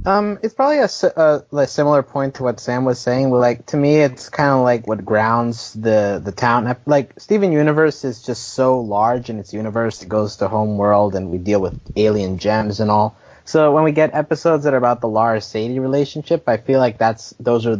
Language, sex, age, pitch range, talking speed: English, male, 20-39, 105-140 Hz, 225 wpm